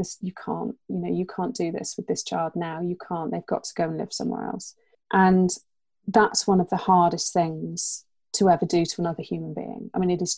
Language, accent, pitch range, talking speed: English, British, 170-190 Hz, 230 wpm